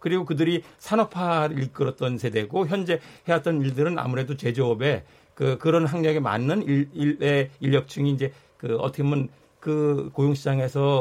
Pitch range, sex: 130-155 Hz, male